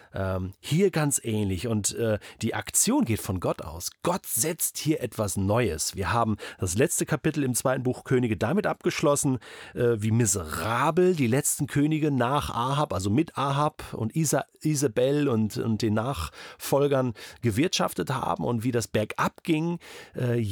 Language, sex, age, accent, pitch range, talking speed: German, male, 40-59, German, 110-150 Hz, 155 wpm